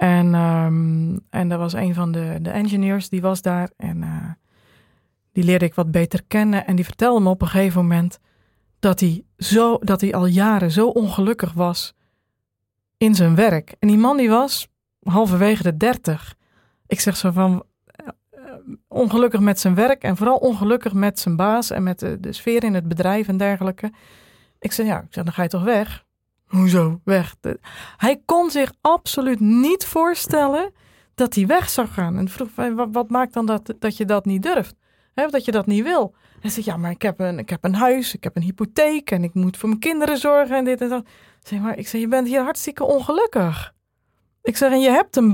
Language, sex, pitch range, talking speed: Dutch, female, 180-240 Hz, 210 wpm